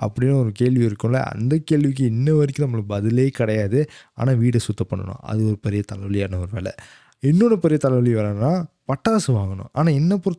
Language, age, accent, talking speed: Tamil, 20-39, native, 125 wpm